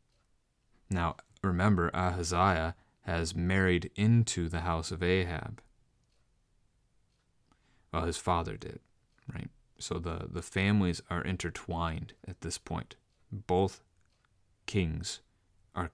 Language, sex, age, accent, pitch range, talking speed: English, male, 30-49, American, 85-100 Hz, 100 wpm